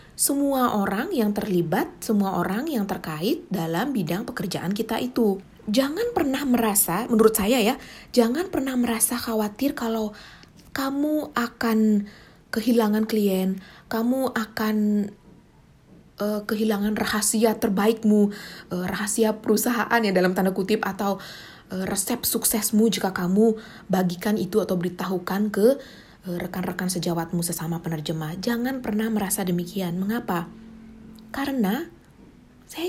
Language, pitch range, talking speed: Indonesian, 190-245 Hz, 115 wpm